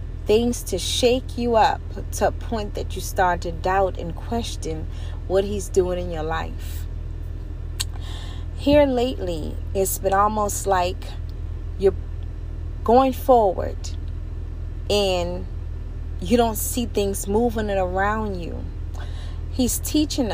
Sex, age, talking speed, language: female, 30-49, 120 wpm, English